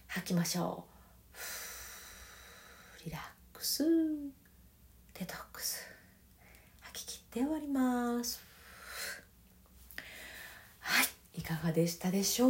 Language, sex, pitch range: Japanese, female, 175-260 Hz